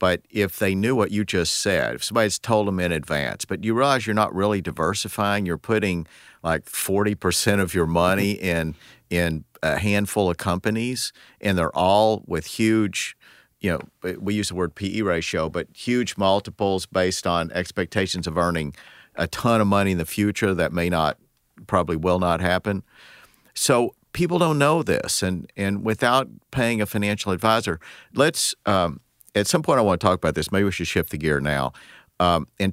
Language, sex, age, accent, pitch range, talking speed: English, male, 50-69, American, 85-100 Hz, 185 wpm